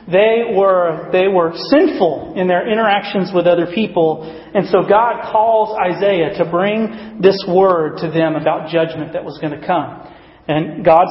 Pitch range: 165-205 Hz